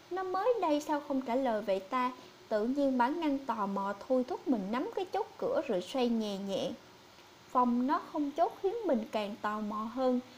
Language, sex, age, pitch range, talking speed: English, female, 20-39, 215-300 Hz, 210 wpm